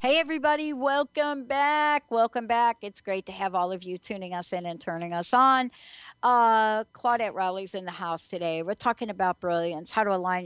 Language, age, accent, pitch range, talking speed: English, 60-79, American, 180-235 Hz, 195 wpm